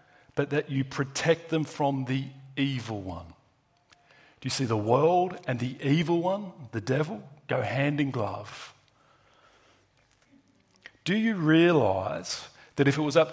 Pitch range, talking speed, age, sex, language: 120-150 Hz, 145 wpm, 40-59, male, English